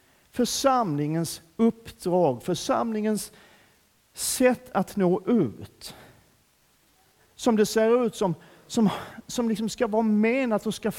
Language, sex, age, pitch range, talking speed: Swedish, male, 50-69, 195-290 Hz, 105 wpm